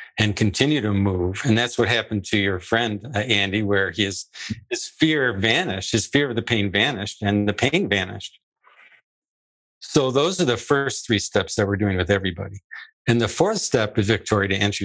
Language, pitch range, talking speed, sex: English, 100-120 Hz, 195 wpm, male